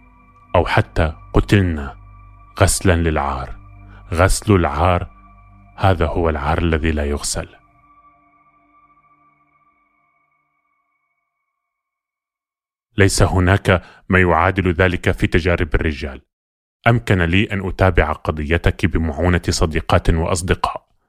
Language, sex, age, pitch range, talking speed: Arabic, male, 30-49, 85-100 Hz, 85 wpm